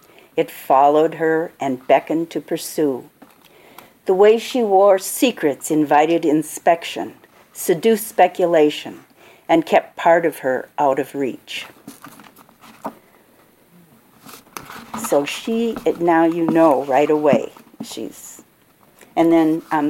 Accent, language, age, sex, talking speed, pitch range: American, English, 50-69, female, 105 wpm, 160-195 Hz